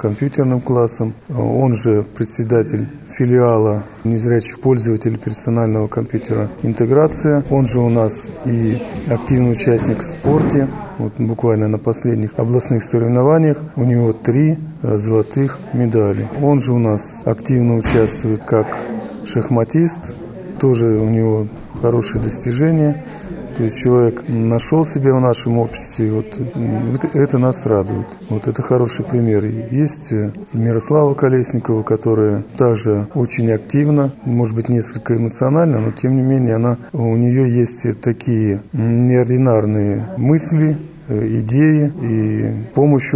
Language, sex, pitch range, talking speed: Russian, male, 110-135 Hz, 115 wpm